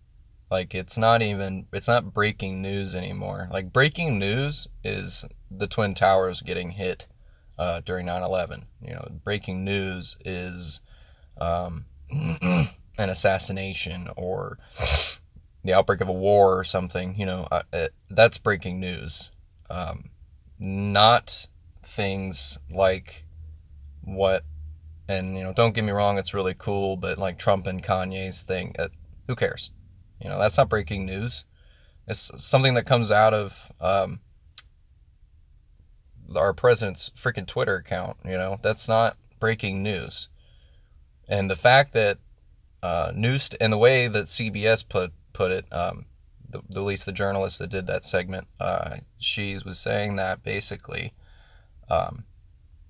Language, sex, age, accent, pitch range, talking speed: English, male, 20-39, American, 85-105 Hz, 140 wpm